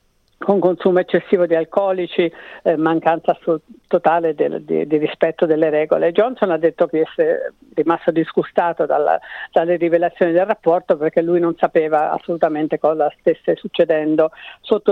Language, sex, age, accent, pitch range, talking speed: Italian, female, 50-69, native, 165-195 Hz, 130 wpm